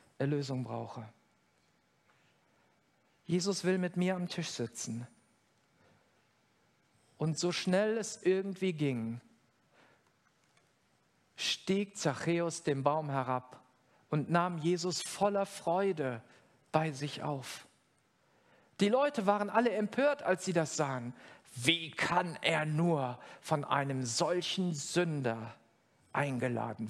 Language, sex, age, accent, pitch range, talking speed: German, male, 50-69, German, 140-205 Hz, 105 wpm